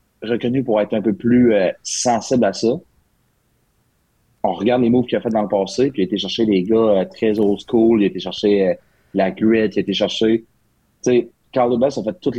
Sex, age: male, 30-49